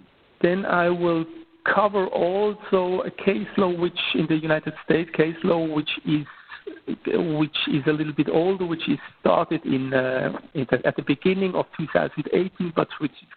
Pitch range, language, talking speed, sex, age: 150-185 Hz, English, 170 wpm, male, 60-79